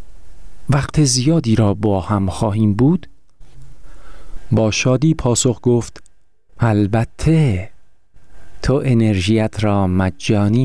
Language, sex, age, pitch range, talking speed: Persian, male, 50-69, 95-125 Hz, 90 wpm